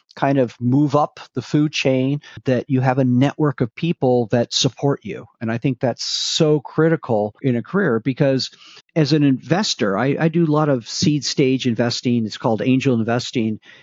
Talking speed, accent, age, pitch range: 185 wpm, American, 50-69, 125-165 Hz